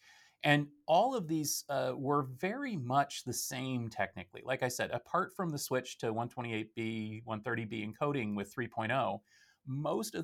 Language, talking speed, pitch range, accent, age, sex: English, 150 wpm, 115-150 Hz, American, 30-49, male